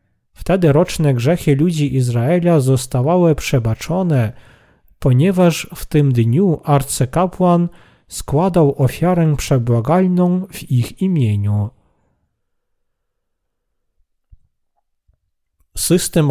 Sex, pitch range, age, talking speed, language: male, 125-170 Hz, 40-59, 70 wpm, Polish